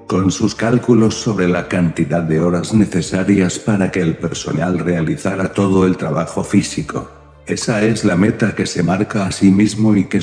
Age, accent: 60-79, Spanish